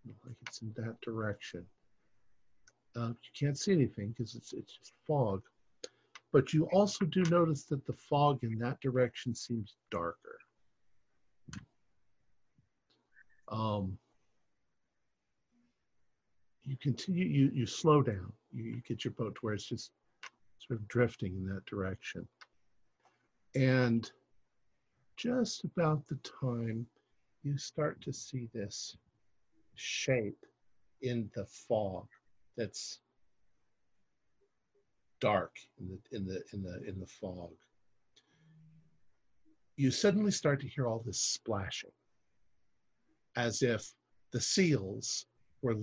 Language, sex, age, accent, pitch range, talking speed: English, male, 50-69, American, 105-140 Hz, 115 wpm